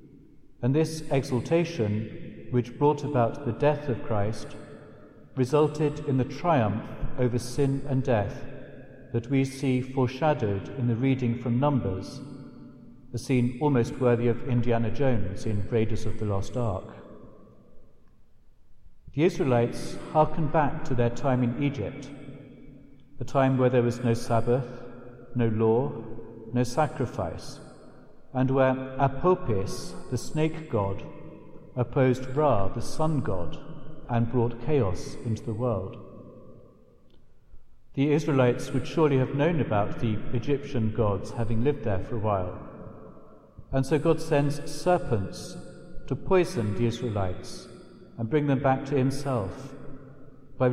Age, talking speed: 60-79, 130 wpm